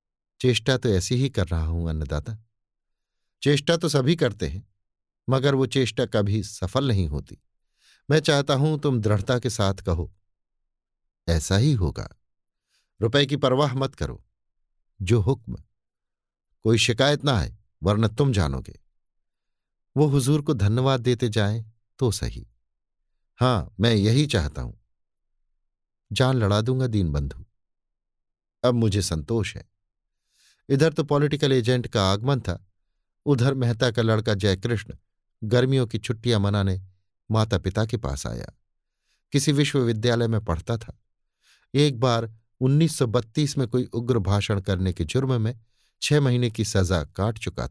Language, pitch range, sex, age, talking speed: Hindi, 95-130 Hz, male, 50-69, 135 wpm